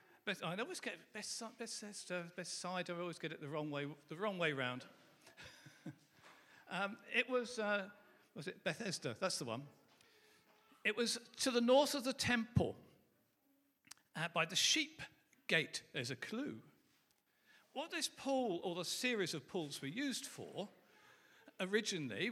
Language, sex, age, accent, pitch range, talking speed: English, male, 50-69, British, 185-250 Hz, 140 wpm